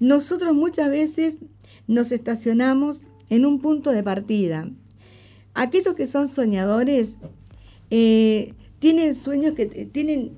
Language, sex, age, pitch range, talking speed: Spanish, female, 50-69, 195-270 Hz, 100 wpm